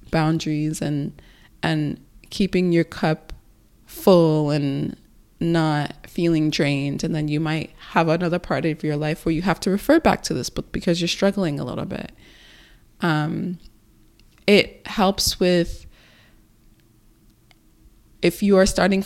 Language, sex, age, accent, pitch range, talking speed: English, female, 20-39, American, 155-185 Hz, 140 wpm